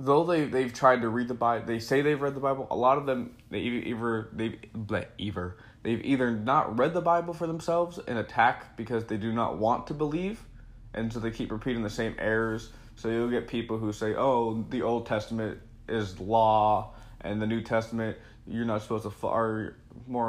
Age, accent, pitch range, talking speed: 20-39, American, 105-120 Hz, 205 wpm